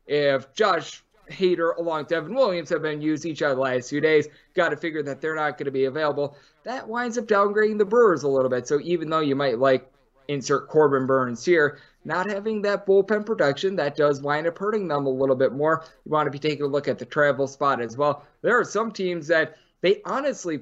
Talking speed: 230 wpm